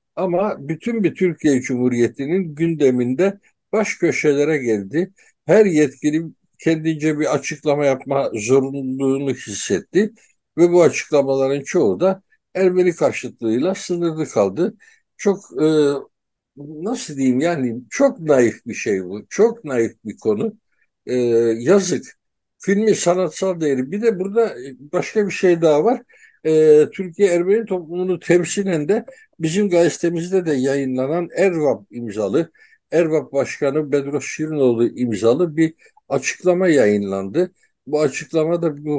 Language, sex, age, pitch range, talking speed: Turkish, male, 60-79, 140-185 Hz, 110 wpm